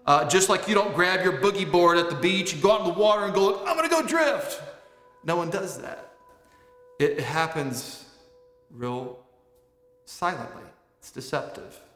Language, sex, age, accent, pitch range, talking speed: English, male, 40-59, American, 135-180 Hz, 170 wpm